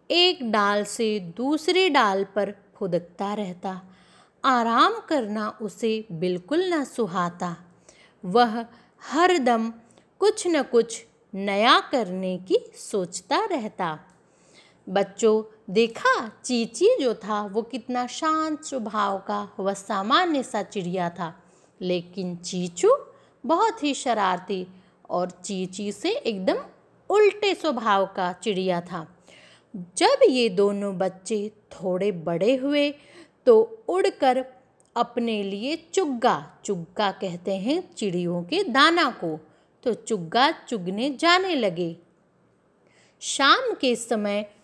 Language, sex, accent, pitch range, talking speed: English, female, Indian, 195-280 Hz, 105 wpm